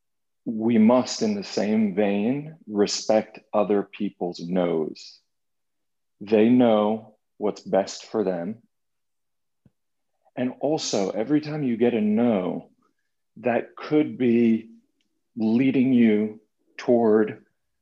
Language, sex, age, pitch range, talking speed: English, male, 40-59, 100-125 Hz, 100 wpm